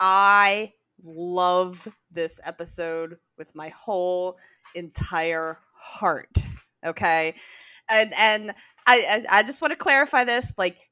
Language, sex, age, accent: English, female, 20-39, American